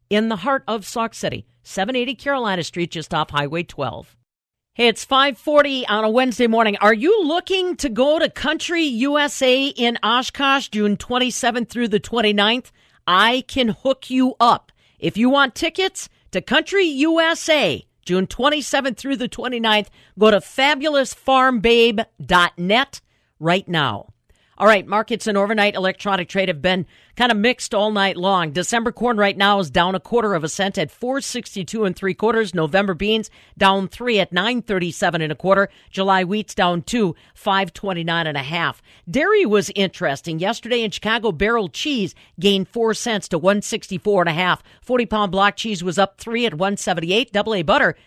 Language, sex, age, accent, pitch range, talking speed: English, female, 50-69, American, 185-245 Hz, 175 wpm